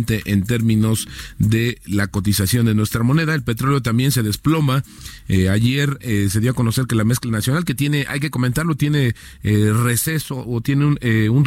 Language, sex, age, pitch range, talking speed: Spanish, male, 40-59, 115-145 Hz, 190 wpm